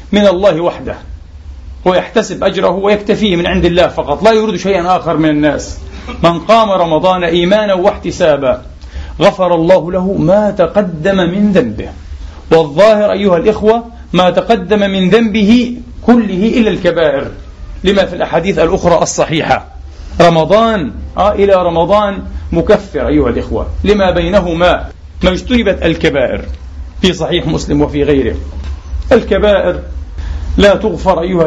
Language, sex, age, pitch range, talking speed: Arabic, male, 40-59, 145-205 Hz, 120 wpm